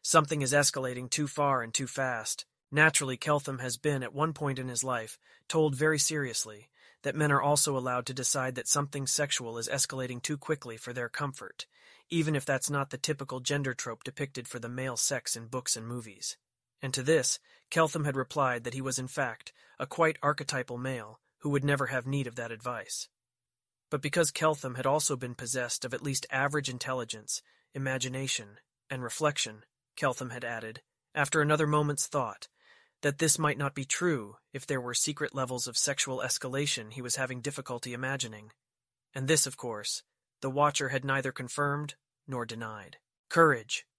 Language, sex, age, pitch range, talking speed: English, male, 30-49, 125-150 Hz, 180 wpm